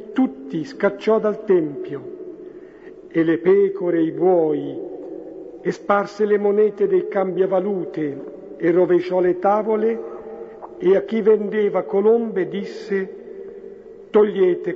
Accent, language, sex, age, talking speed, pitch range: native, Italian, male, 50-69, 110 wpm, 165-205 Hz